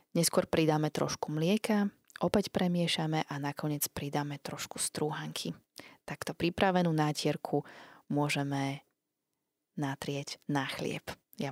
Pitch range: 145-190 Hz